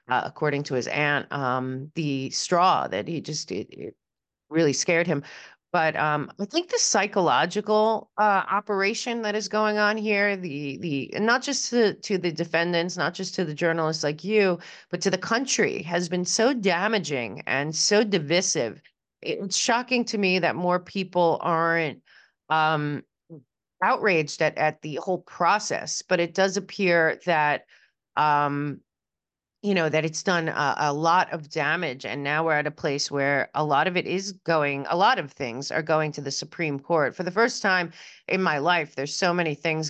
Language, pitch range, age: English, 145-185 Hz, 30-49